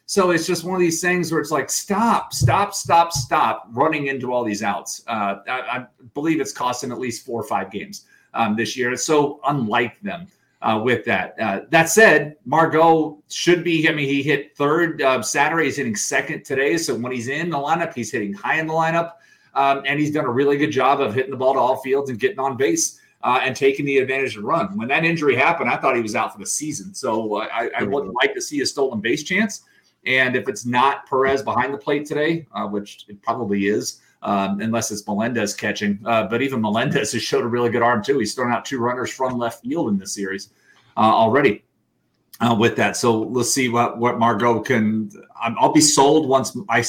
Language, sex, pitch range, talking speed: English, male, 115-155 Hz, 230 wpm